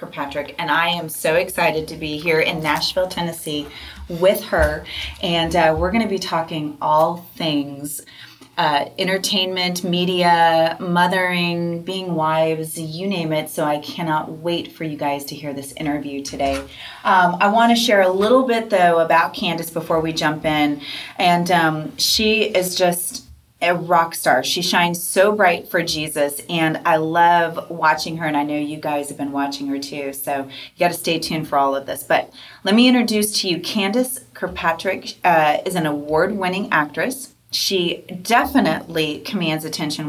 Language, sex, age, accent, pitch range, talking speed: English, female, 30-49, American, 155-185 Hz, 170 wpm